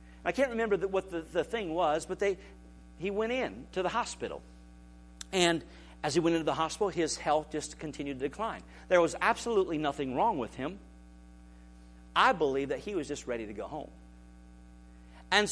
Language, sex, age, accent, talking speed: English, male, 50-69, American, 180 wpm